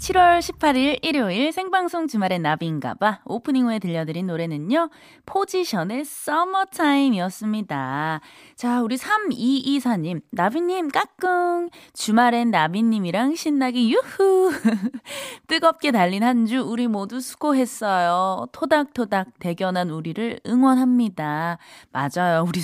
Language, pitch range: Korean, 175-280 Hz